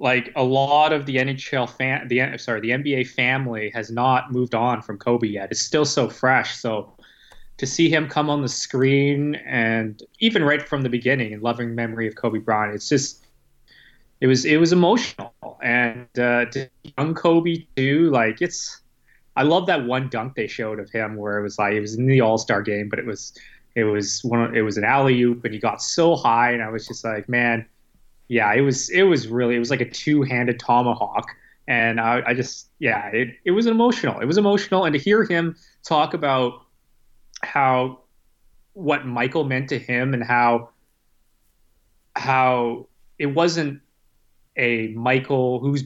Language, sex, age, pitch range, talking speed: English, male, 20-39, 115-140 Hz, 190 wpm